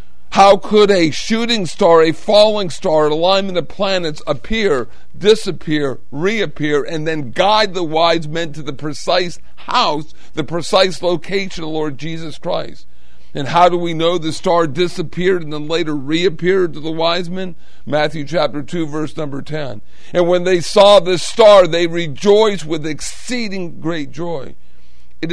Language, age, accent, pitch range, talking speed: English, 50-69, American, 150-180 Hz, 160 wpm